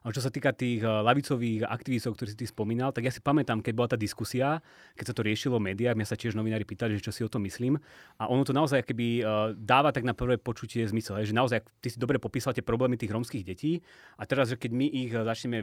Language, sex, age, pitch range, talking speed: Slovak, male, 30-49, 110-135 Hz, 255 wpm